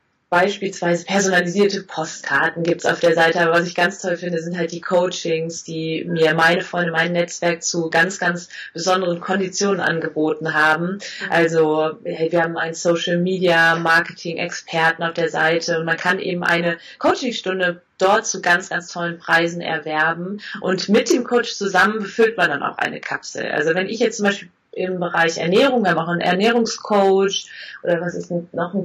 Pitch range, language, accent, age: 165-195 Hz, German, German, 30-49